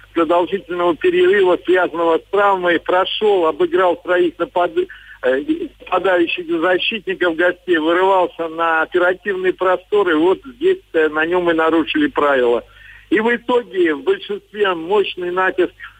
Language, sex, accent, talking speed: Russian, male, native, 110 wpm